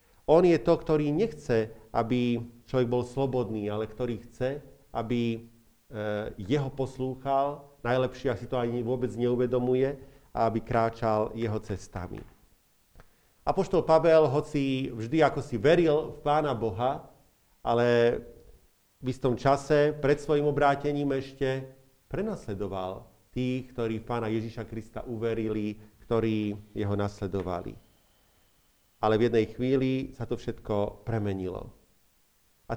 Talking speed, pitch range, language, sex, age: 120 wpm, 110-135 Hz, Slovak, male, 40-59